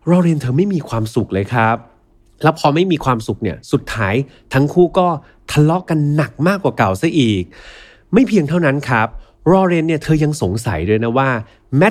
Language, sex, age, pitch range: Thai, male, 30-49, 110-155 Hz